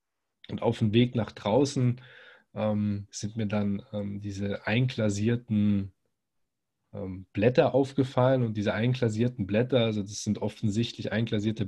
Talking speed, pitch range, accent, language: 130 wpm, 105-120 Hz, German, German